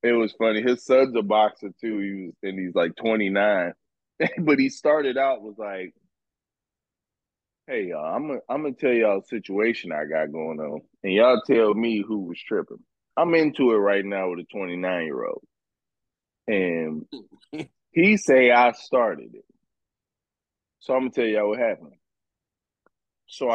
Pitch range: 110-150 Hz